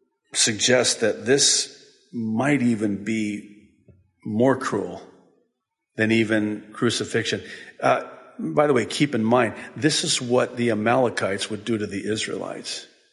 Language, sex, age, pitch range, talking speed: English, male, 50-69, 115-180 Hz, 130 wpm